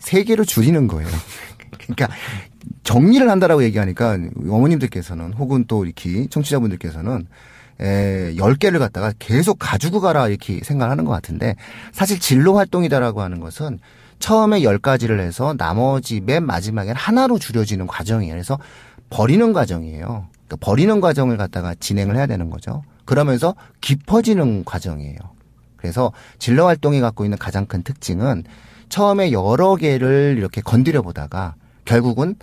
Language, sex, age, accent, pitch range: Korean, male, 40-59, native, 100-145 Hz